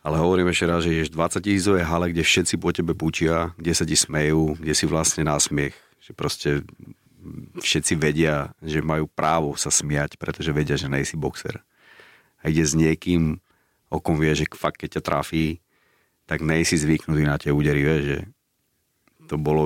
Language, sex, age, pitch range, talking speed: Slovak, male, 40-59, 75-85 Hz, 175 wpm